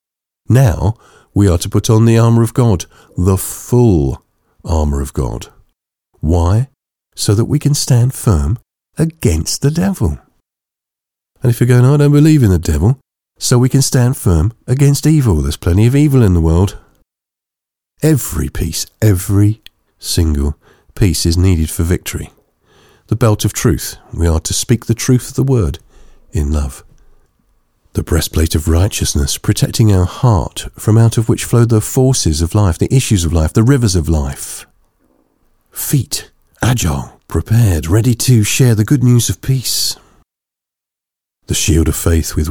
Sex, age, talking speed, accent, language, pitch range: male, 50-69, 160 wpm, British, English, 80-115 Hz